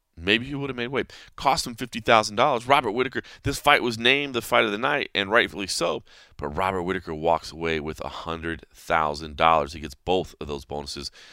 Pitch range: 80-110 Hz